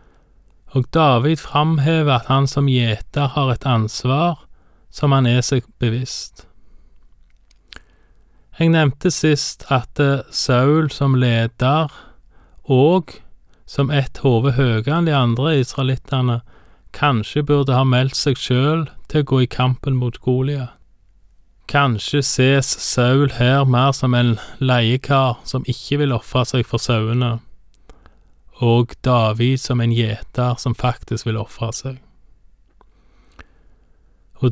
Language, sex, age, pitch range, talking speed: Danish, male, 20-39, 115-140 Hz, 120 wpm